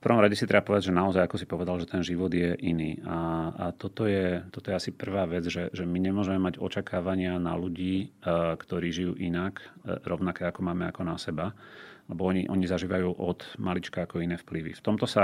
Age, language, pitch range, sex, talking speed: 30-49, Slovak, 85-95 Hz, male, 220 wpm